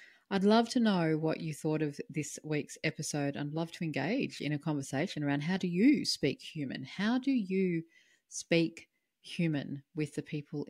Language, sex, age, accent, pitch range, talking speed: English, female, 40-59, Australian, 145-190 Hz, 180 wpm